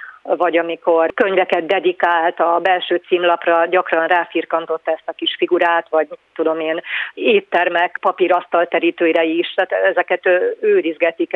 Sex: female